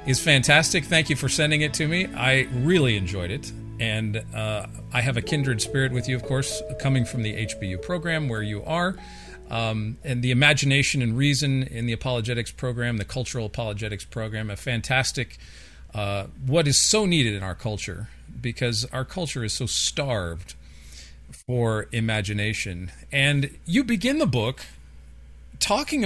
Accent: American